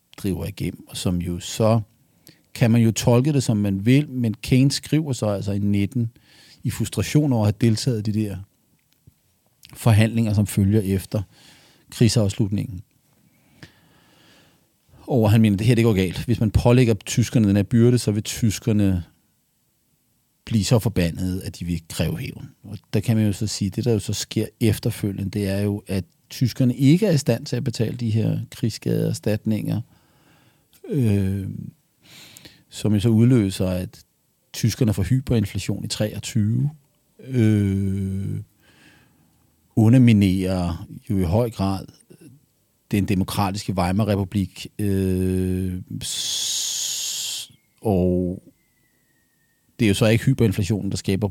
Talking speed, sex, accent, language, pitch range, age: 145 wpm, male, native, Danish, 100-120 Hz, 40-59